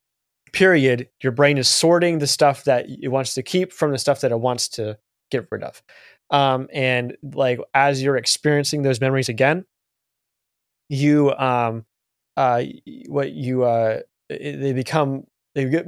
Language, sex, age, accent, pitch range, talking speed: English, male, 20-39, American, 120-145 Hz, 160 wpm